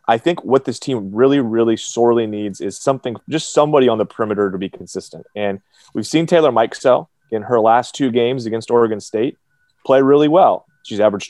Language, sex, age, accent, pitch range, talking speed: English, male, 30-49, American, 110-140 Hz, 195 wpm